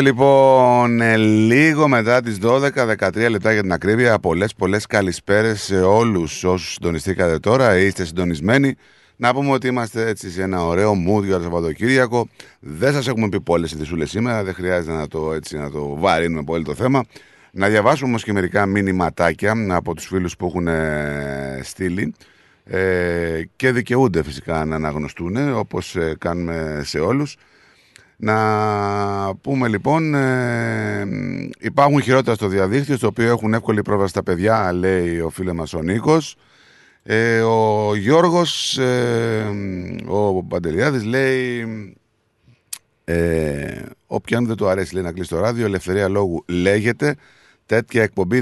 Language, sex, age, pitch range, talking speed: Greek, male, 30-49, 85-120 Hz, 145 wpm